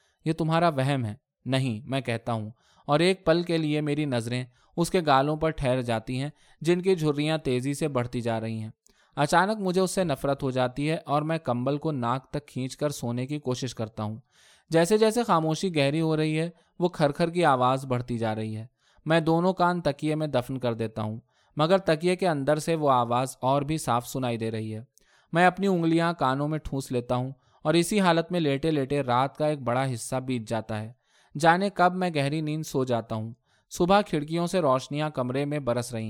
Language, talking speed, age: Urdu, 210 wpm, 20-39